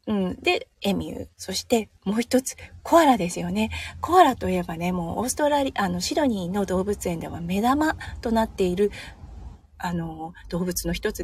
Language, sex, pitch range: Japanese, female, 170-255 Hz